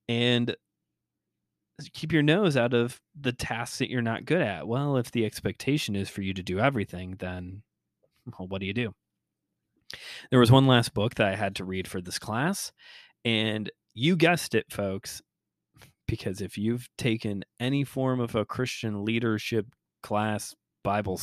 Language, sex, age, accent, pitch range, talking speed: English, male, 30-49, American, 100-125 Hz, 165 wpm